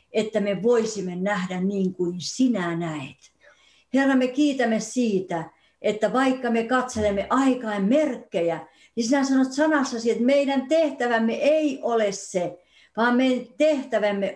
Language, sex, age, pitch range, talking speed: Finnish, female, 60-79, 200-265 Hz, 130 wpm